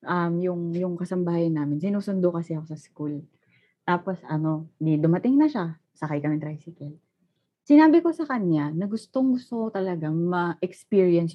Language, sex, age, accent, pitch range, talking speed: Filipino, female, 20-39, native, 155-235 Hz, 145 wpm